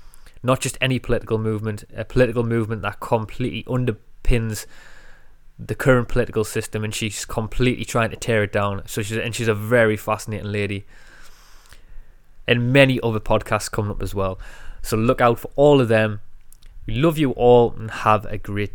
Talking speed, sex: 175 wpm, male